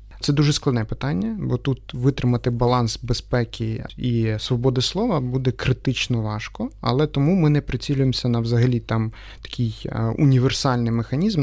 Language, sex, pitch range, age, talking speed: Ukrainian, male, 115-135 Hz, 30-49, 135 wpm